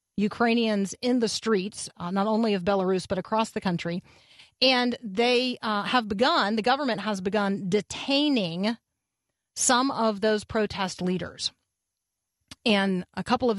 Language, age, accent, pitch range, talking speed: English, 40-59, American, 195-235 Hz, 140 wpm